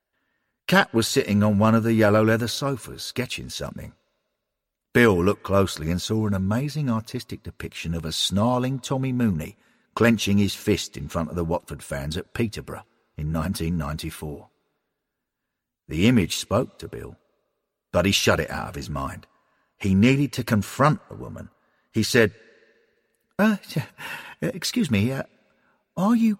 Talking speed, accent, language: 150 wpm, British, English